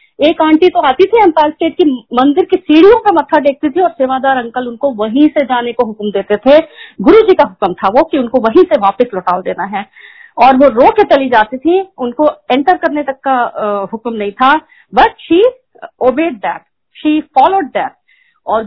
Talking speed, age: 200 wpm, 50-69